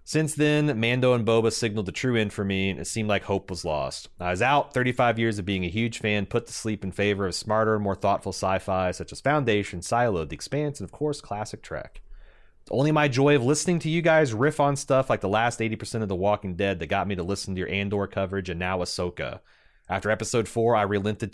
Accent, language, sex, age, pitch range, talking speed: American, English, male, 30-49, 95-120 Hz, 240 wpm